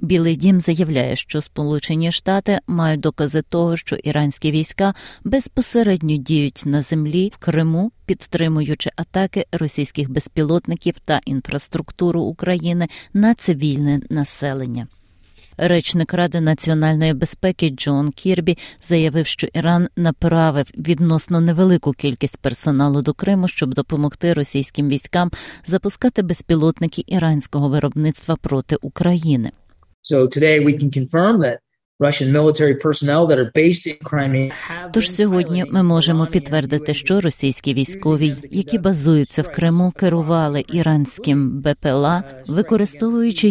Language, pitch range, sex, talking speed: Ukrainian, 145-175 Hz, female, 105 wpm